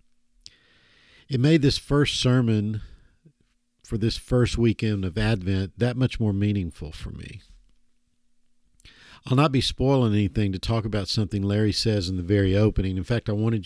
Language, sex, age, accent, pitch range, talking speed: English, male, 50-69, American, 90-120 Hz, 160 wpm